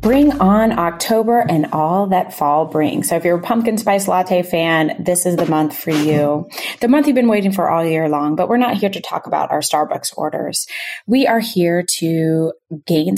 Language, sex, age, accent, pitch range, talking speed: English, female, 20-39, American, 165-220 Hz, 210 wpm